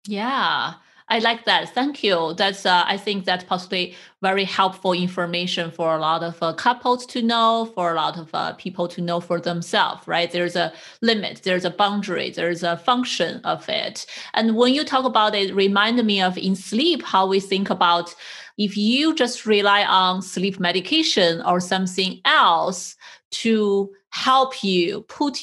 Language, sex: English, female